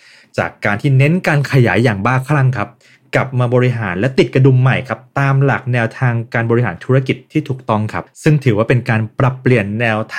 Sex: male